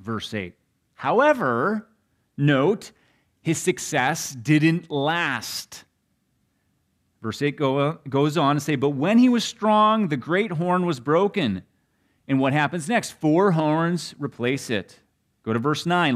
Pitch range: 130-190 Hz